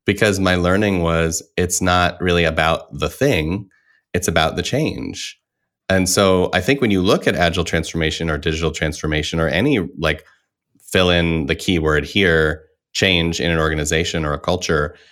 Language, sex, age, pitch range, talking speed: English, male, 30-49, 75-85 Hz, 165 wpm